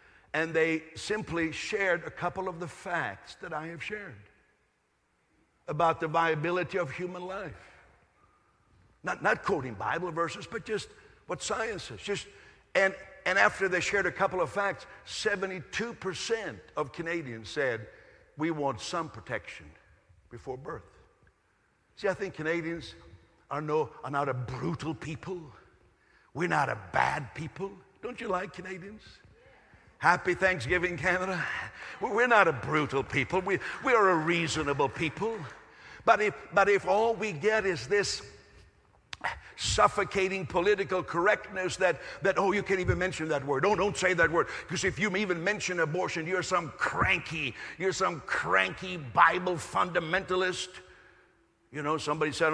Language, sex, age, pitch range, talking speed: English, male, 60-79, 155-190 Hz, 145 wpm